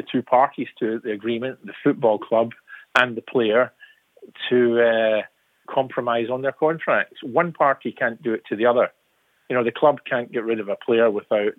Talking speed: 190 wpm